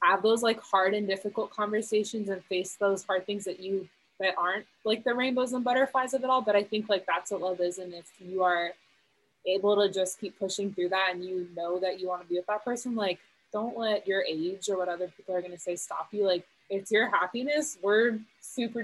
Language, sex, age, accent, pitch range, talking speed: English, female, 20-39, American, 185-230 Hz, 240 wpm